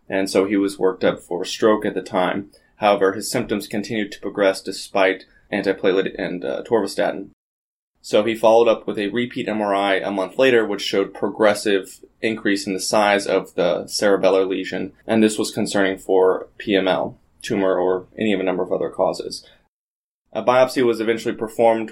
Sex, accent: male, American